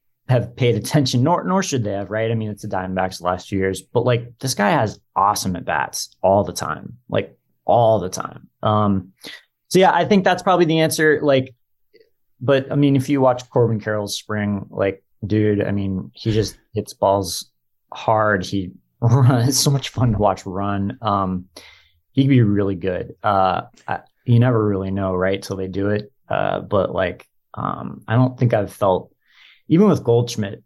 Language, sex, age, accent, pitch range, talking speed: English, male, 30-49, American, 100-130 Hz, 185 wpm